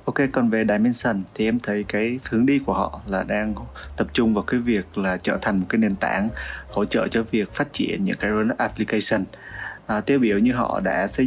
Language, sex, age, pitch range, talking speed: Vietnamese, male, 20-39, 100-120 Hz, 230 wpm